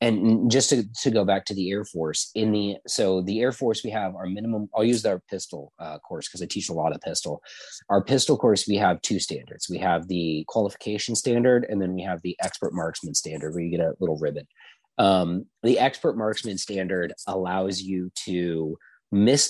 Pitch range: 95-120 Hz